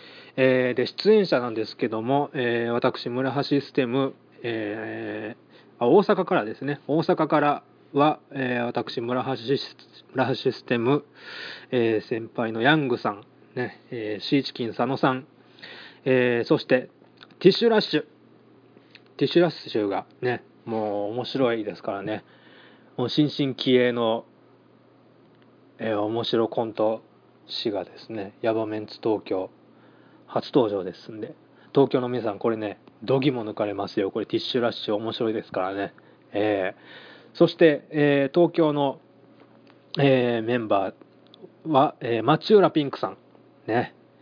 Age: 20-39